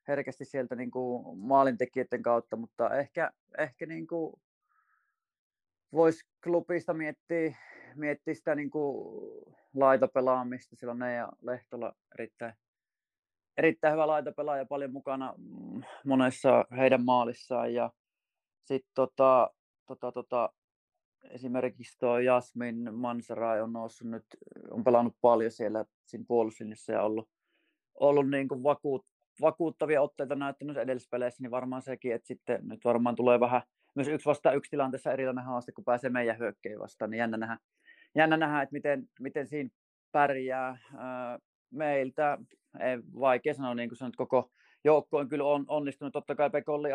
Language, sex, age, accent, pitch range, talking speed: Finnish, male, 30-49, native, 120-145 Hz, 130 wpm